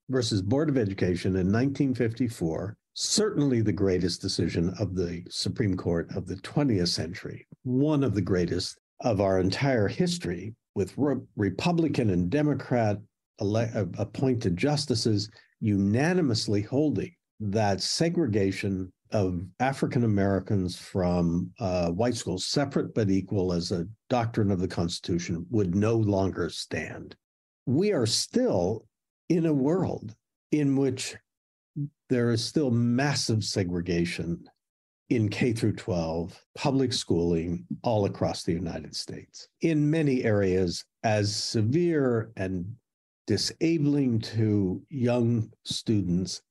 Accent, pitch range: American, 90-130 Hz